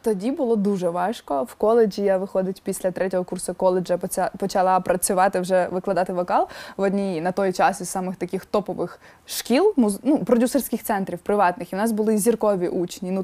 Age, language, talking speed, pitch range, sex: 20-39, Ukrainian, 170 wpm, 195-255 Hz, female